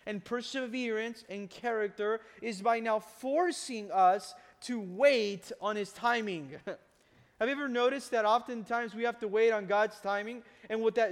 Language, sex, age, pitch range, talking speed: English, male, 20-39, 220-275 Hz, 160 wpm